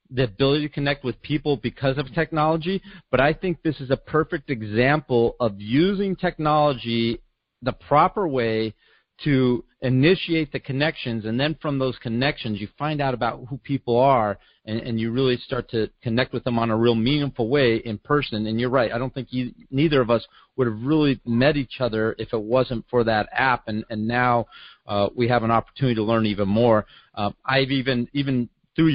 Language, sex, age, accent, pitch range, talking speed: English, male, 40-59, American, 115-145 Hz, 195 wpm